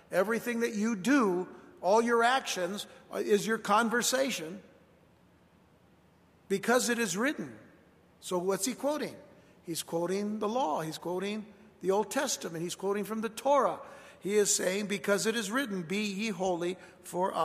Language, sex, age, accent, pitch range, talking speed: English, male, 60-79, American, 195-240 Hz, 150 wpm